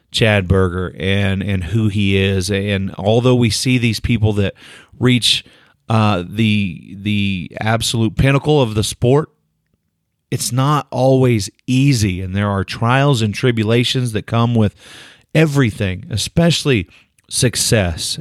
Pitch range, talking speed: 105-130 Hz, 130 wpm